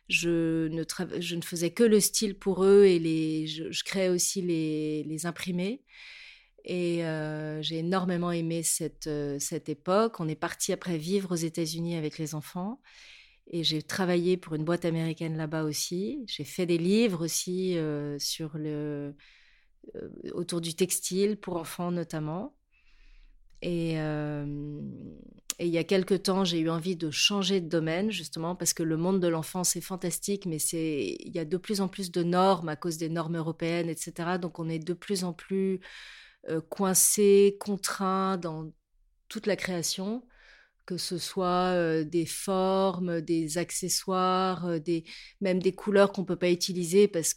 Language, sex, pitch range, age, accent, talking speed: French, female, 160-190 Hz, 30-49, French, 170 wpm